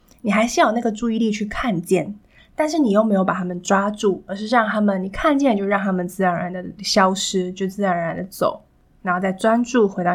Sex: female